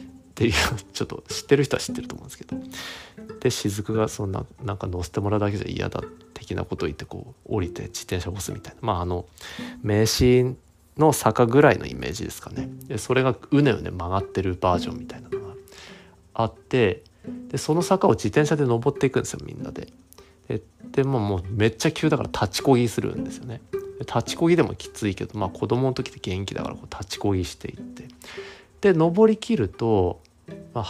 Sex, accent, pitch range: male, native, 100-150 Hz